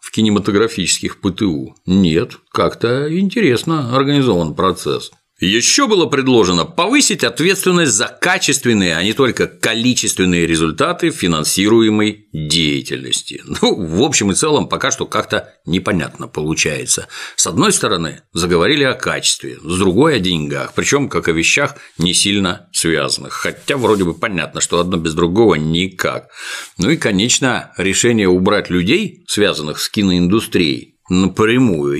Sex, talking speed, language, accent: male, 130 wpm, Russian, native